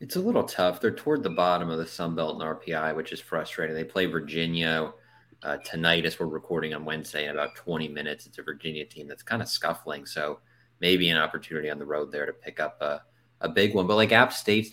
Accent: American